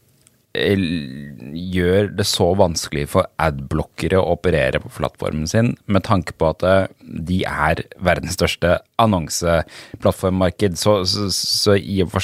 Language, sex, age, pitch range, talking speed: English, male, 30-49, 90-115 Hz, 125 wpm